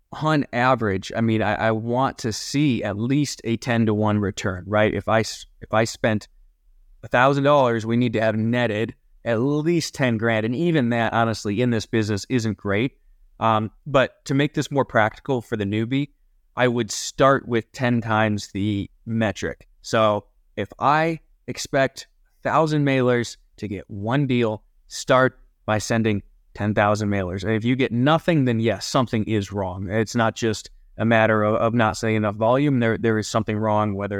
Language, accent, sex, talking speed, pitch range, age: English, American, male, 180 wpm, 105-125 Hz, 20-39